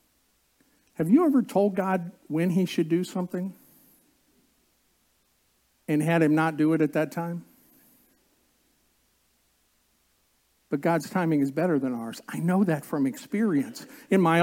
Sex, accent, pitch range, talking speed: male, American, 175-255 Hz, 135 wpm